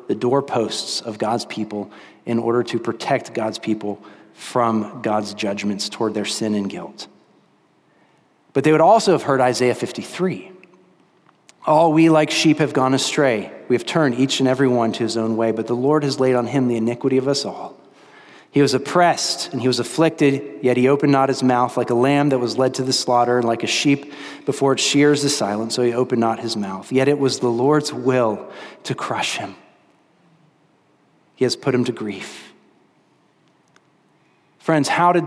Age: 30-49